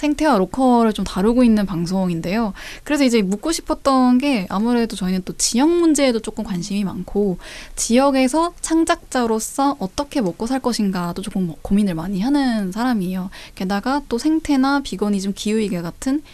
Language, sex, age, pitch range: Korean, female, 20-39, 190-265 Hz